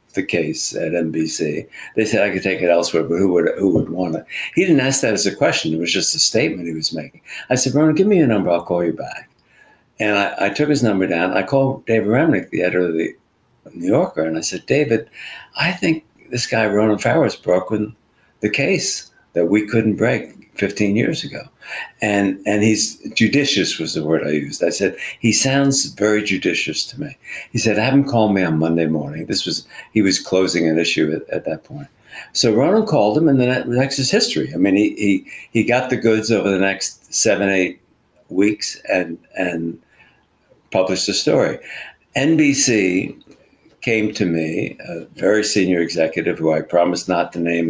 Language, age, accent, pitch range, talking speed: English, 60-79, American, 85-120 Hz, 205 wpm